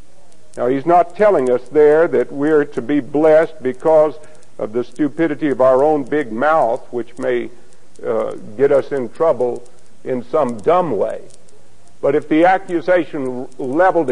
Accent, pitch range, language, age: American, 140-185 Hz, English, 60-79